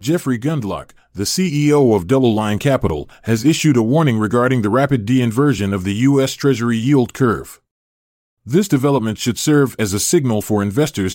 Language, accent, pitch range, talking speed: English, American, 110-145 Hz, 165 wpm